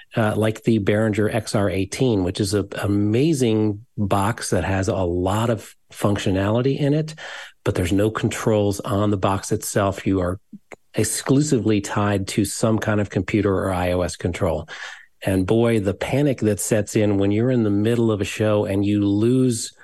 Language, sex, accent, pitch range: English, male, American, 100-115 Hz